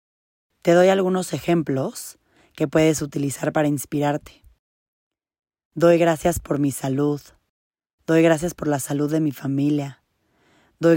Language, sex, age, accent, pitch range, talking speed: Spanish, female, 20-39, Mexican, 140-160 Hz, 125 wpm